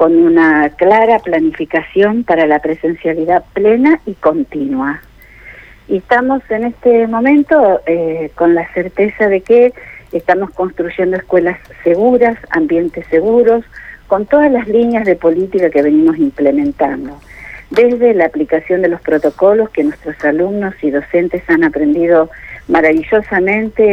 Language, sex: Spanish, female